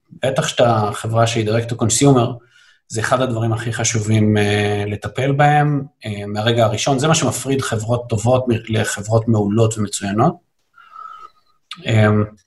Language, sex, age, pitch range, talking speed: Hebrew, male, 30-49, 110-135 Hz, 130 wpm